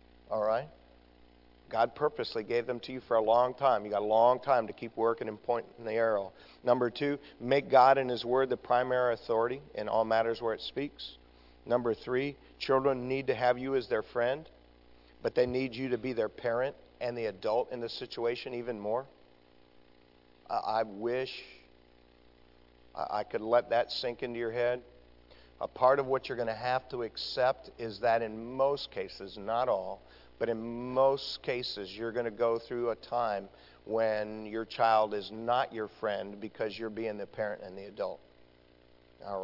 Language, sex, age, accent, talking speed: English, male, 50-69, American, 185 wpm